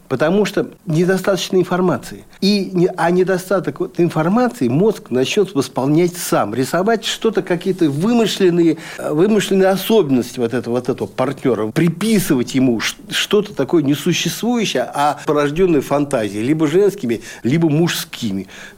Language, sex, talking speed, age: Russian, male, 110 wpm, 60-79